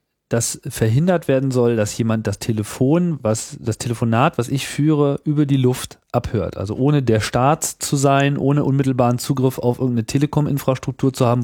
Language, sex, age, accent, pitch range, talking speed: German, male, 40-59, German, 120-155 Hz, 170 wpm